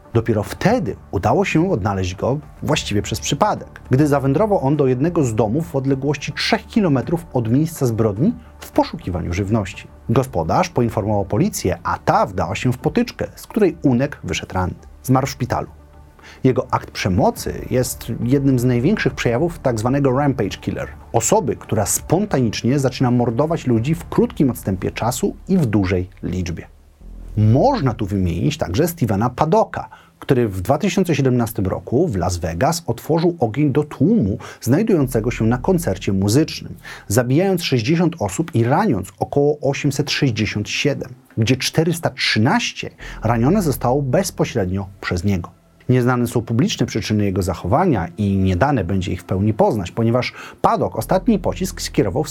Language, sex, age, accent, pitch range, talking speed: Polish, male, 30-49, native, 105-150 Hz, 140 wpm